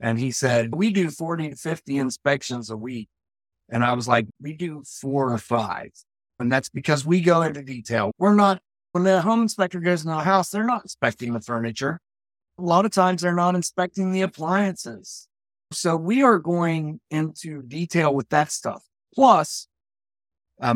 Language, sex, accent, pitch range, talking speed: English, male, American, 130-180 Hz, 180 wpm